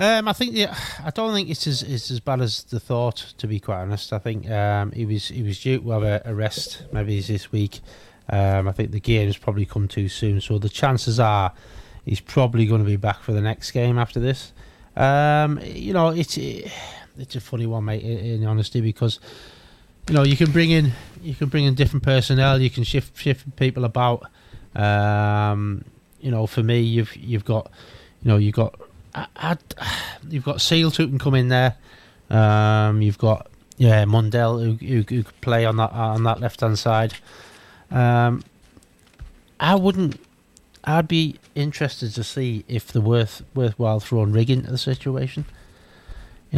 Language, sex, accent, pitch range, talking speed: English, male, British, 105-135 Hz, 190 wpm